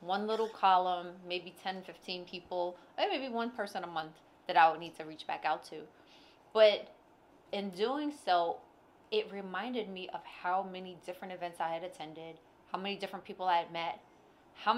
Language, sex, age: English, female, 20-39